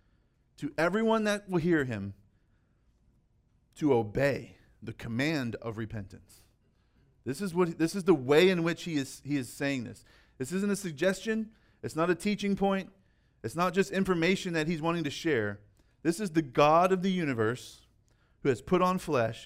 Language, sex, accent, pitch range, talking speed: English, male, American, 120-175 Hz, 175 wpm